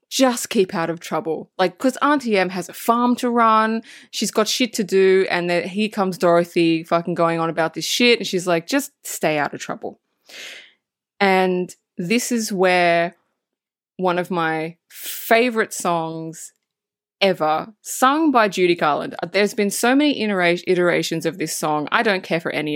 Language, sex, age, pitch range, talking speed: English, female, 20-39, 165-230 Hz, 170 wpm